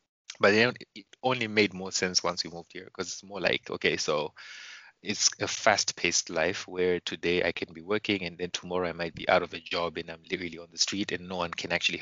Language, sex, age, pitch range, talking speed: English, male, 20-39, 85-95 Hz, 240 wpm